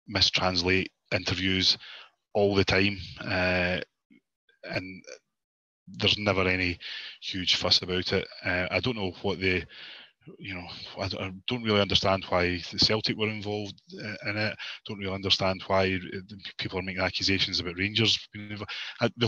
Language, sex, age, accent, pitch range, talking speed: English, male, 20-39, British, 95-105 Hz, 145 wpm